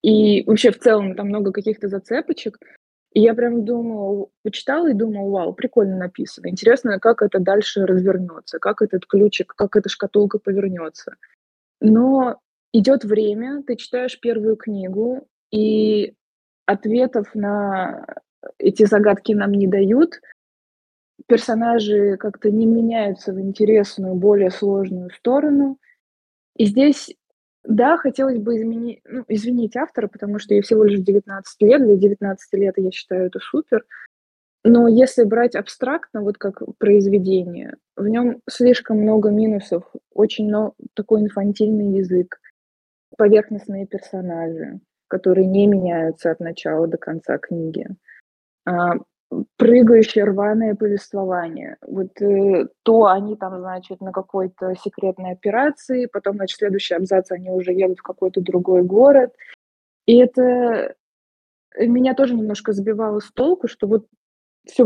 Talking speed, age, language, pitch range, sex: 125 wpm, 20-39, Russian, 195-235 Hz, female